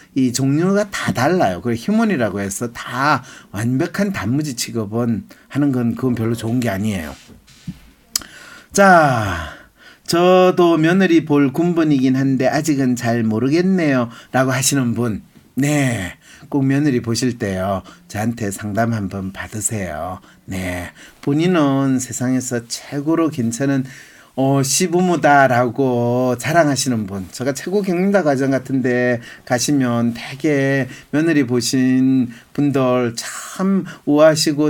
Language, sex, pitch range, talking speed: English, male, 120-160 Hz, 100 wpm